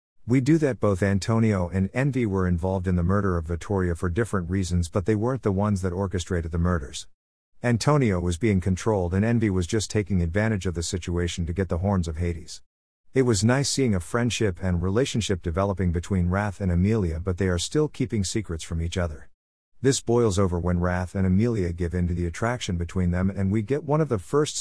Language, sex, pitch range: English, male, 90-110 Hz